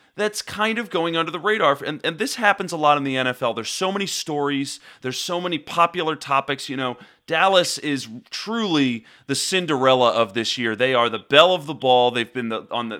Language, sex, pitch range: English, male, 135-185 Hz